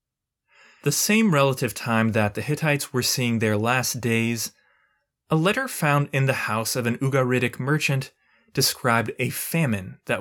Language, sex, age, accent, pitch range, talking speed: English, male, 20-39, American, 110-140 Hz, 155 wpm